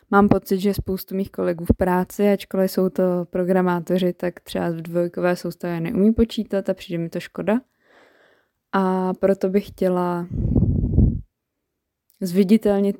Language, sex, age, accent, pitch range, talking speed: Czech, female, 20-39, native, 180-215 Hz, 135 wpm